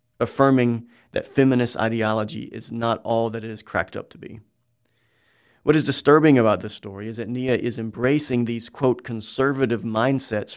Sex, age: male, 40-59